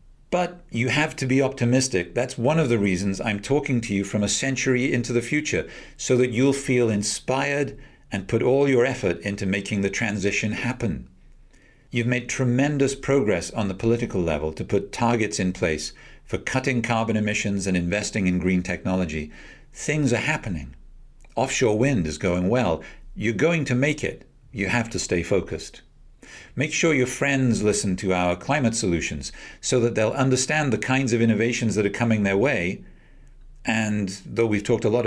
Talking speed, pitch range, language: 180 wpm, 95-130 Hz, English